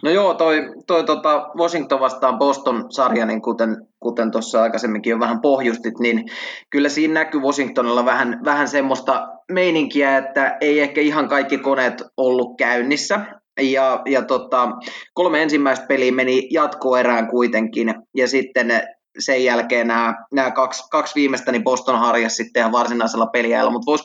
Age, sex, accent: 20-39, male, native